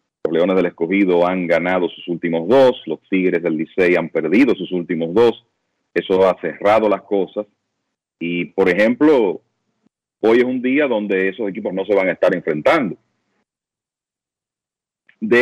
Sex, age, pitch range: male, 40-59, 90-115 Hz